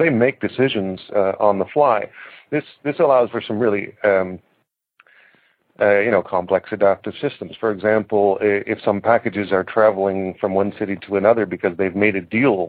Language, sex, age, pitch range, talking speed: English, male, 50-69, 95-110 Hz, 175 wpm